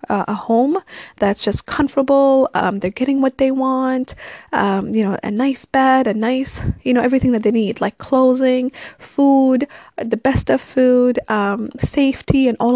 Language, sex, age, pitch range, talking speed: English, female, 20-39, 220-265 Hz, 170 wpm